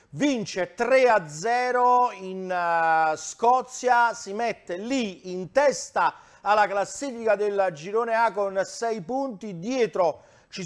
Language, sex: Italian, male